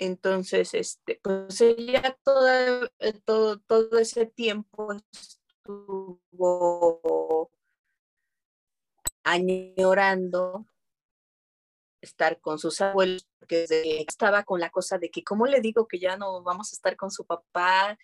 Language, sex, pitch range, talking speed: Spanish, female, 185-235 Hz, 115 wpm